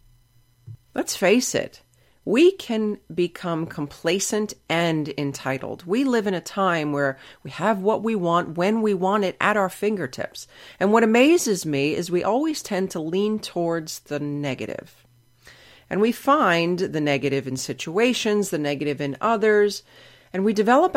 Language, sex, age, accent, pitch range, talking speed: English, female, 40-59, American, 140-215 Hz, 155 wpm